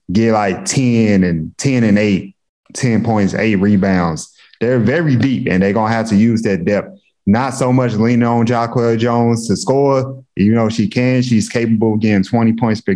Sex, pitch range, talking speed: male, 105-125 Hz, 200 wpm